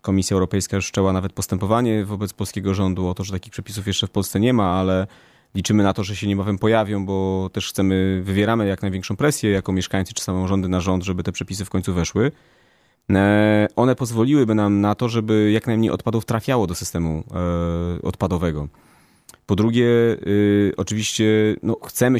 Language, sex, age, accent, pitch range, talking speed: Polish, male, 30-49, native, 95-105 Hz, 180 wpm